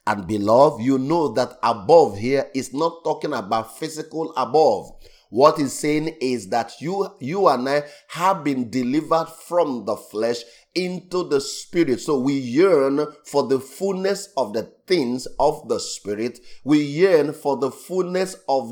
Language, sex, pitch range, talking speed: English, male, 125-165 Hz, 155 wpm